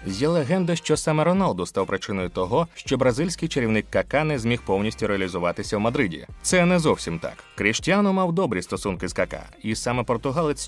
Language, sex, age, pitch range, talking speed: Ukrainian, male, 30-49, 100-150 Hz, 175 wpm